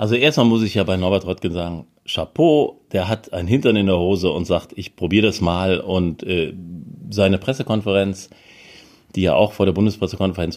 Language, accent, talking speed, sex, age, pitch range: German, German, 180 wpm, male, 40-59, 95-115 Hz